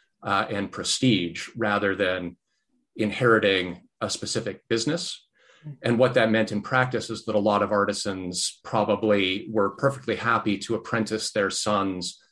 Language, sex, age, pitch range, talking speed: English, male, 40-59, 95-120 Hz, 140 wpm